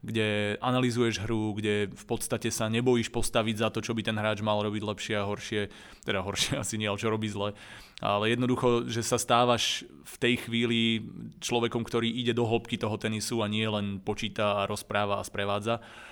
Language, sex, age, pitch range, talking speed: Slovak, male, 20-39, 105-120 Hz, 190 wpm